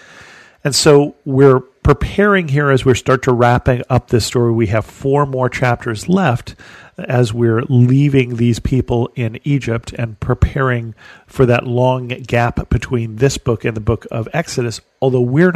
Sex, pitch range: male, 115-140 Hz